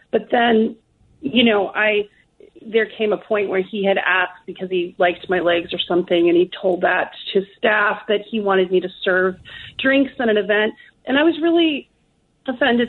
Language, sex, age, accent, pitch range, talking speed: English, female, 30-49, American, 190-225 Hz, 190 wpm